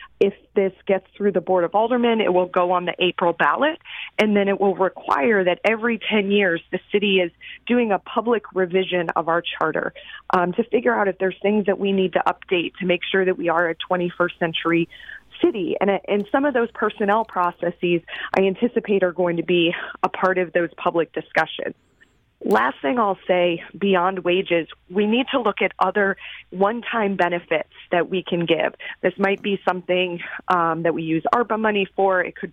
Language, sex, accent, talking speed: English, female, American, 195 wpm